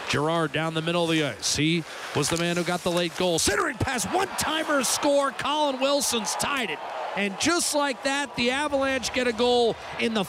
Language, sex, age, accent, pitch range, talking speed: English, male, 40-59, American, 205-335 Hz, 205 wpm